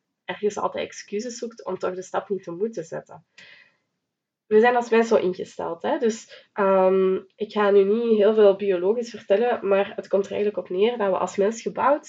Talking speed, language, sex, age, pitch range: 190 wpm, Dutch, female, 20-39, 185-220 Hz